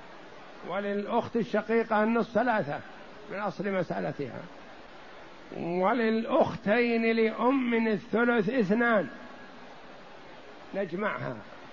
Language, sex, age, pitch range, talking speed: Arabic, male, 60-79, 185-225 Hz, 65 wpm